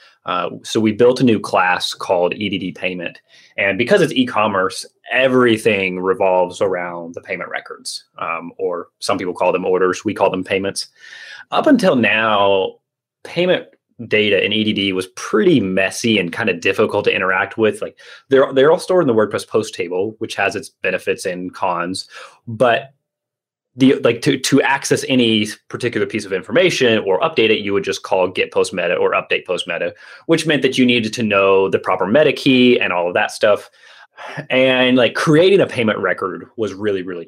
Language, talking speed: English, 180 wpm